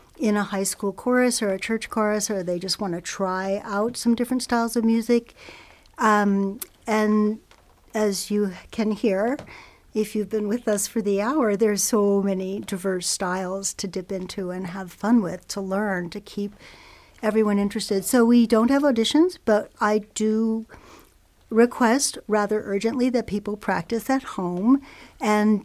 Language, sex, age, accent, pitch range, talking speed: English, female, 60-79, American, 195-235 Hz, 160 wpm